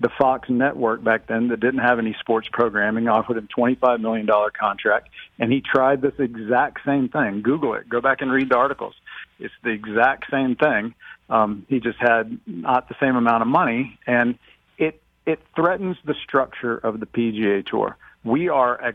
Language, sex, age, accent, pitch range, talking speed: English, male, 50-69, American, 115-140 Hz, 185 wpm